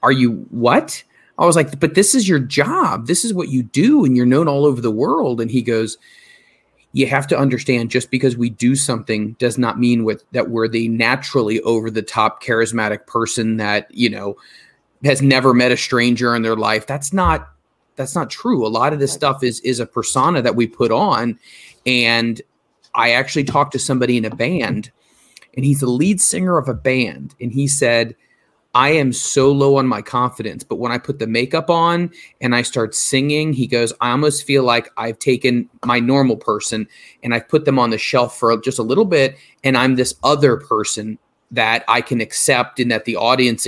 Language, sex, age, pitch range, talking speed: English, male, 30-49, 115-140 Hz, 205 wpm